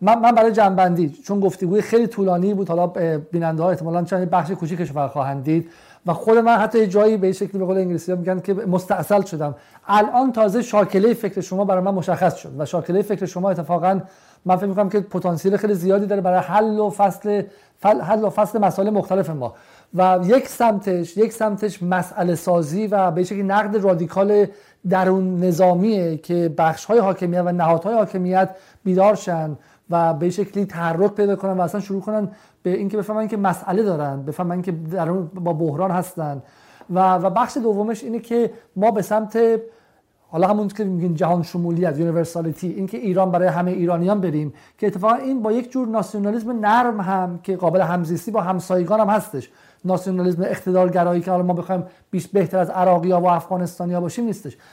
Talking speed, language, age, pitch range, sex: 175 wpm, Persian, 50-69, 175-210 Hz, male